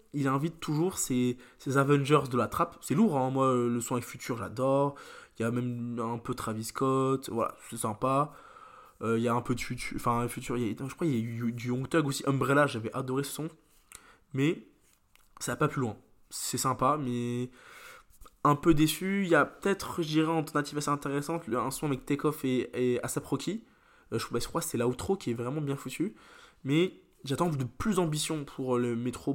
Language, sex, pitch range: French, male, 125-155 Hz